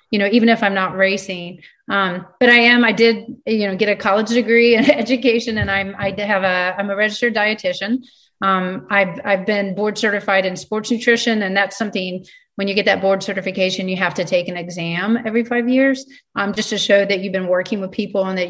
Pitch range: 185-215 Hz